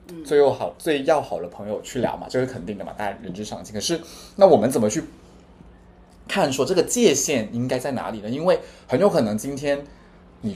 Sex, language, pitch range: male, Chinese, 105-165 Hz